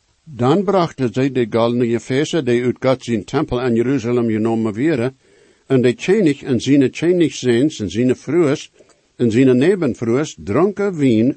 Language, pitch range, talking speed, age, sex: English, 115-150 Hz, 160 wpm, 60-79, male